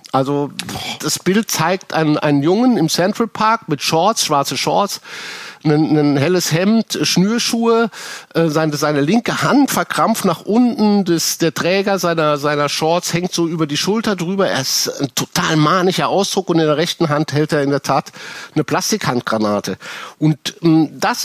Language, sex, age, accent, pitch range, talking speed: German, male, 50-69, German, 145-185 Hz, 160 wpm